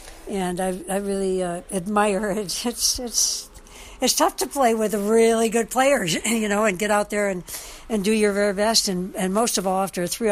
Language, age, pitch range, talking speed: English, 60-79, 180-220 Hz, 215 wpm